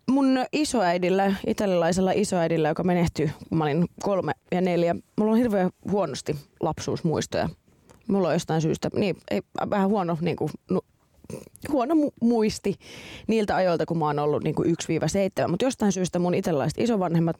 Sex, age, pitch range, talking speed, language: female, 30-49, 155-195 Hz, 145 wpm, Finnish